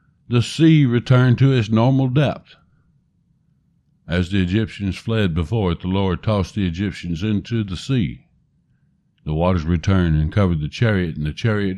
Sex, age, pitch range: male, 60-79, 90-130 Hz